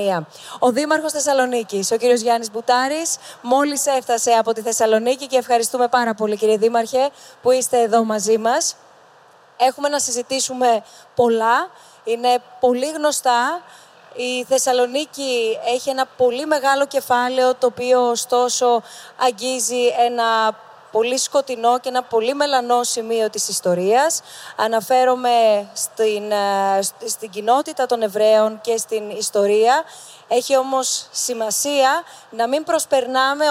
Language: Greek